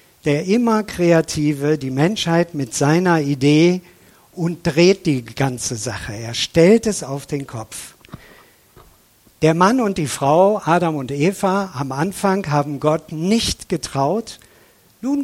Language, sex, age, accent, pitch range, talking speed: German, male, 60-79, German, 135-185 Hz, 135 wpm